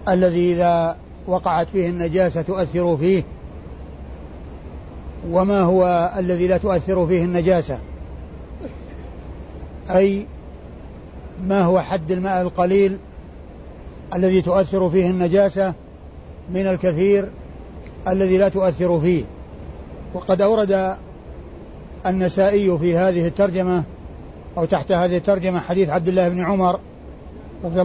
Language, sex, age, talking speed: Arabic, male, 60-79, 100 wpm